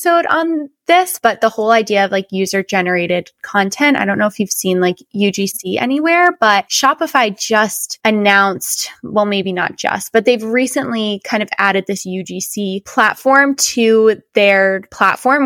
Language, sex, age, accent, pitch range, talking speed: English, female, 20-39, American, 195-250 Hz, 150 wpm